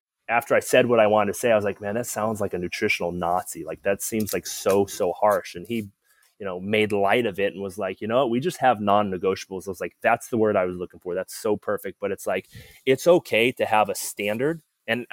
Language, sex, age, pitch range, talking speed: English, male, 20-39, 100-115 Hz, 260 wpm